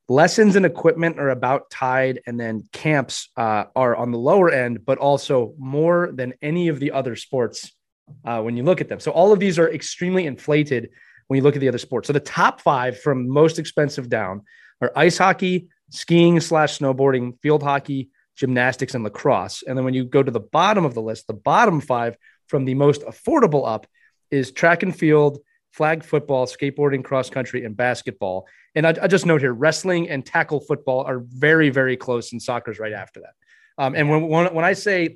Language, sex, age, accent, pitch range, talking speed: English, male, 30-49, American, 125-160 Hz, 205 wpm